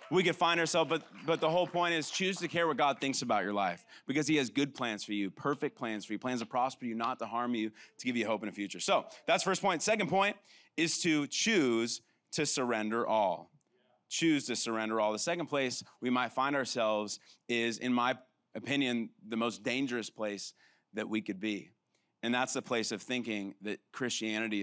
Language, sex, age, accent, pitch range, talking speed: English, male, 30-49, American, 110-140 Hz, 215 wpm